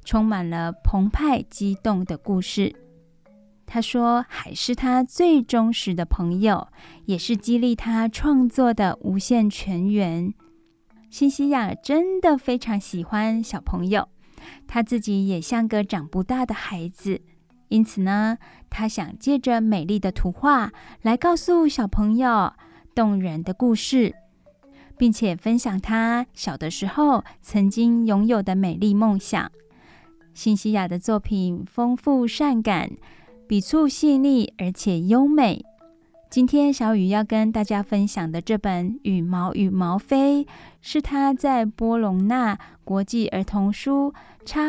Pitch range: 195-245 Hz